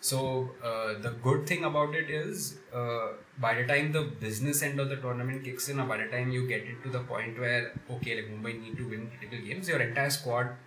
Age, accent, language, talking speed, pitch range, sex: 20-39, Indian, English, 235 wpm, 115-140 Hz, male